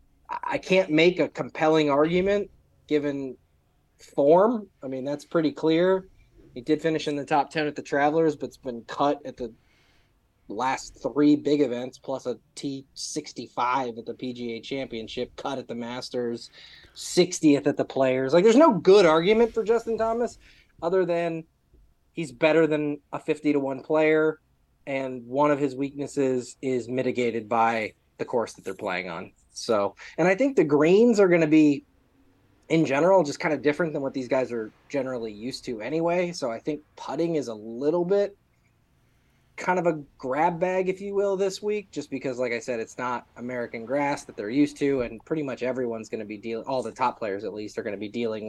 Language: English